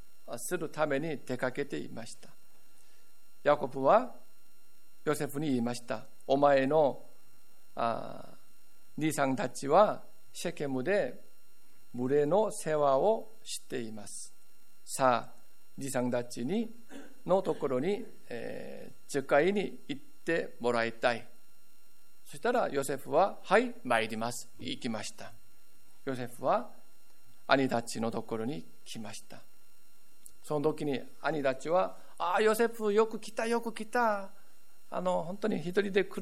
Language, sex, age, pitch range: Japanese, male, 50-69, 125-205 Hz